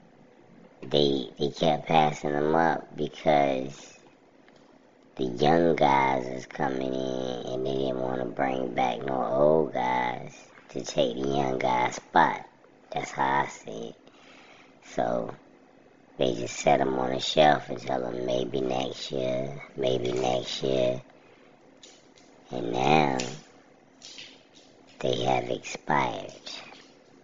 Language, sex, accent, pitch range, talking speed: English, male, American, 65-75 Hz, 125 wpm